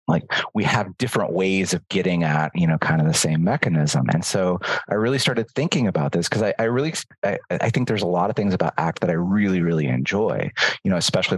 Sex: male